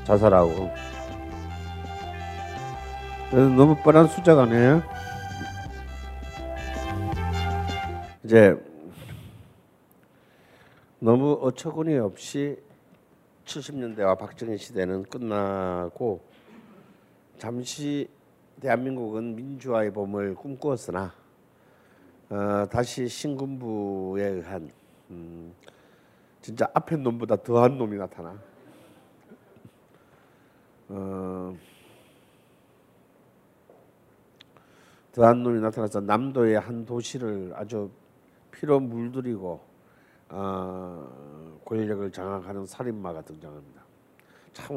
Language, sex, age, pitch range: Korean, male, 50-69, 90-130 Hz